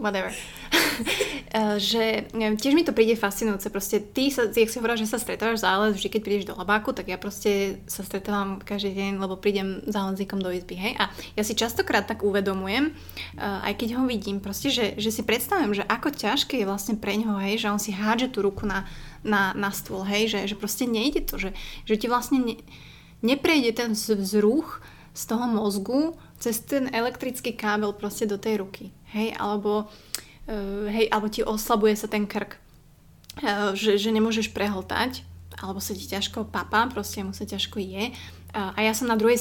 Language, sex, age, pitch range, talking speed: Slovak, female, 20-39, 200-230 Hz, 185 wpm